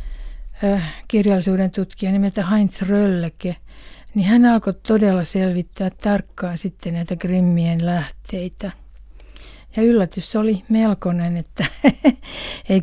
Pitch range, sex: 175-210 Hz, female